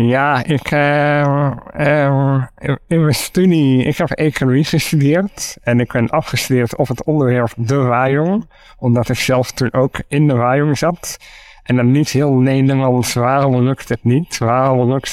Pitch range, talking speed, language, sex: 120-140 Hz, 160 wpm, Dutch, male